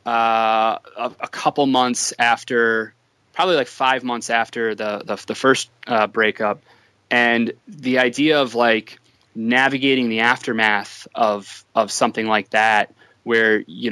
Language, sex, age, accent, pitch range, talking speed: English, male, 20-39, American, 110-135 Hz, 140 wpm